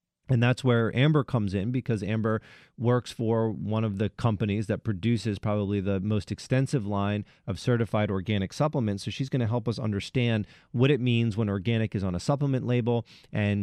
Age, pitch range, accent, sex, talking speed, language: 30-49, 100-120 Hz, American, male, 190 wpm, English